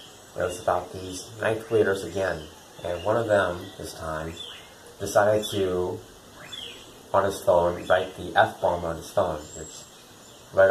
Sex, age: male, 30-49